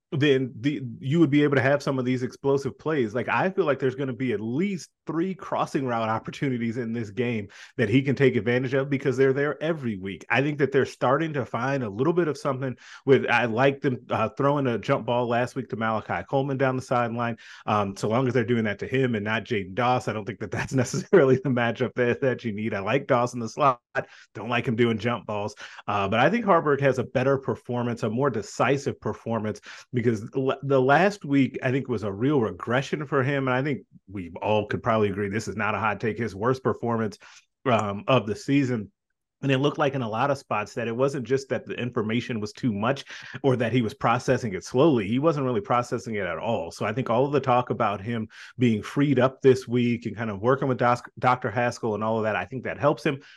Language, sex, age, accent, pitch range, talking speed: English, male, 30-49, American, 115-135 Hz, 245 wpm